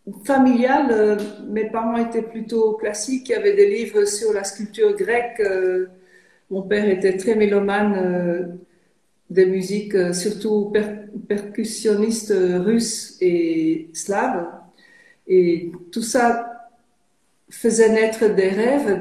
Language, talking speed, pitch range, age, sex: French, 110 wpm, 190-230 Hz, 50-69, female